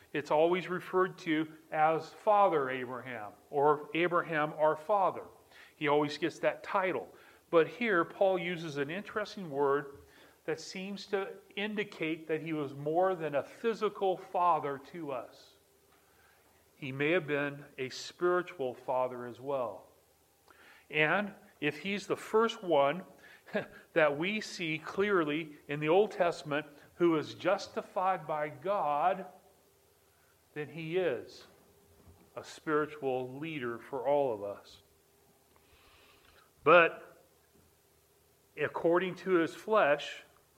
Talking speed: 120 wpm